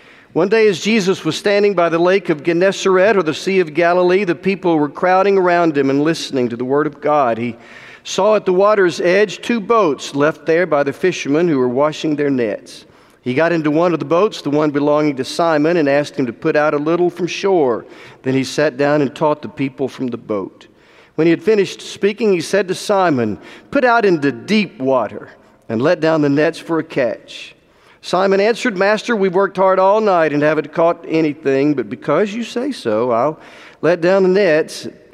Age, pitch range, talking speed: 50-69, 145-190 Hz, 210 wpm